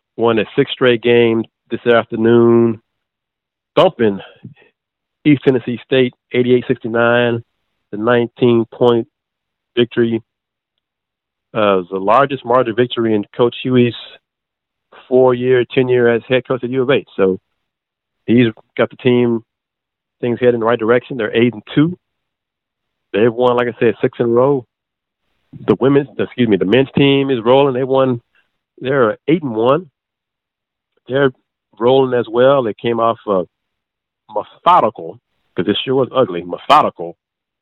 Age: 40-59